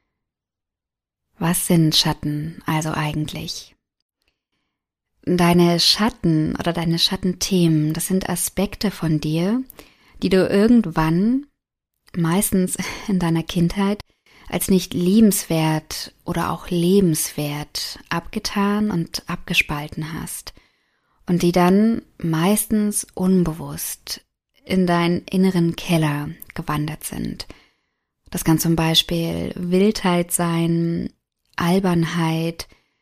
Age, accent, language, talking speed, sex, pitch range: 20-39, German, German, 90 wpm, female, 165-190 Hz